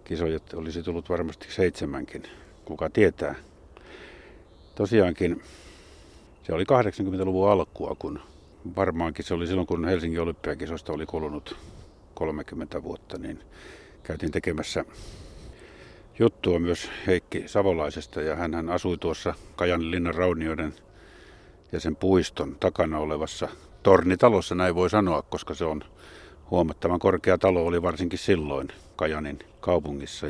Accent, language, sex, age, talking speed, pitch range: native, Finnish, male, 50-69, 115 wpm, 80-90 Hz